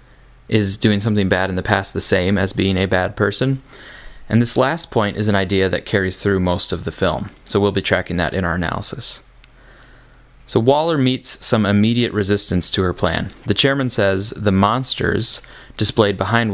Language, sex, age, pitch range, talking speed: English, male, 20-39, 95-115 Hz, 190 wpm